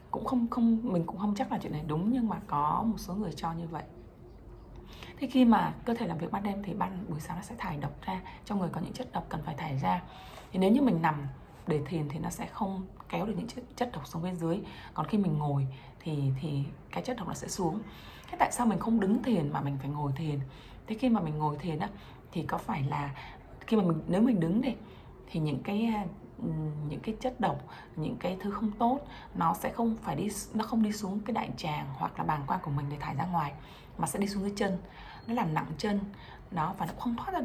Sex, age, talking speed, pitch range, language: female, 20-39, 255 wpm, 155-220 Hz, Vietnamese